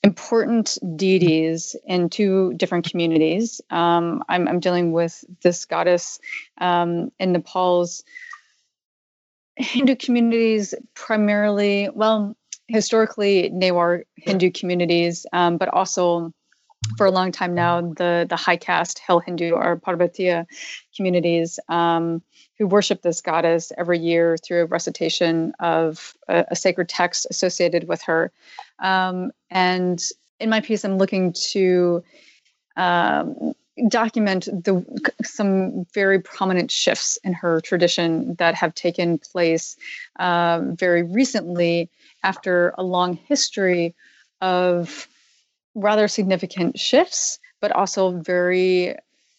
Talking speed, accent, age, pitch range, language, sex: 115 wpm, American, 30-49, 175-210 Hz, English, female